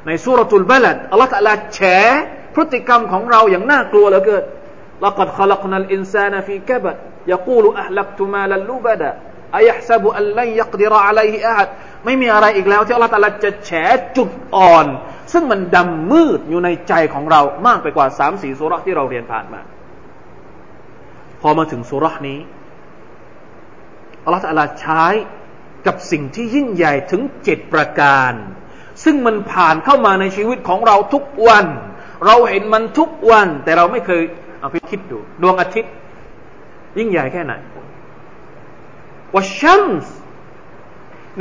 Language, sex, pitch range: Thai, male, 150-220 Hz